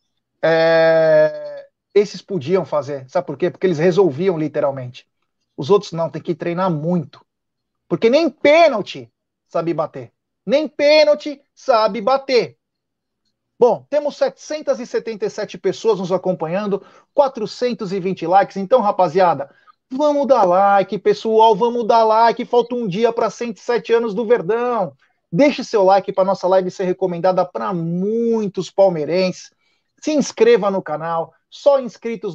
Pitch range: 175-230 Hz